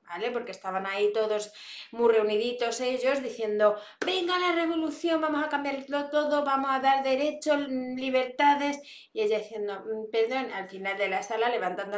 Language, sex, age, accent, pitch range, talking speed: Spanish, female, 20-39, Spanish, 195-255 Hz, 155 wpm